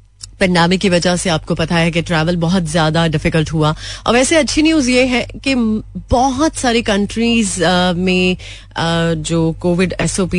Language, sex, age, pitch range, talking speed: Hindi, female, 30-49, 160-190 Hz, 155 wpm